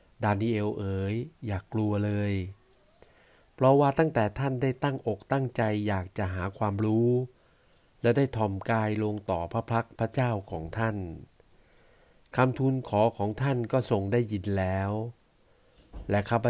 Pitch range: 100-120 Hz